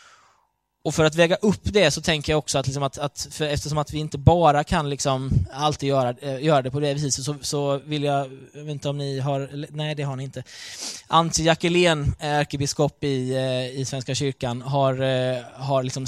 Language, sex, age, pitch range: Swedish, male, 20-39, 130-155 Hz